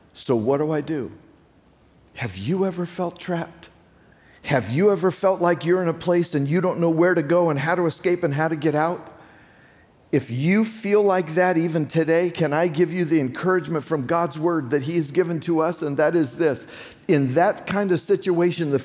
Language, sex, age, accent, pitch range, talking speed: English, male, 50-69, American, 155-195 Hz, 215 wpm